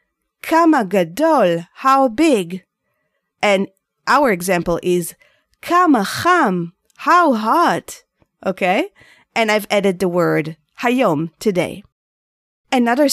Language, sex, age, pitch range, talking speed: English, female, 30-49, 180-285 Hz, 95 wpm